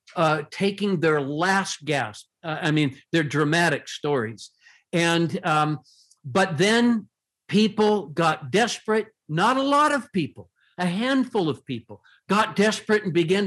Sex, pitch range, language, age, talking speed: male, 150-205 Hz, English, 60-79, 140 wpm